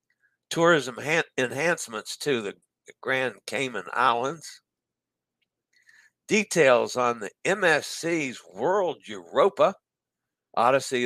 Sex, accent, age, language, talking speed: male, American, 60-79, English, 75 wpm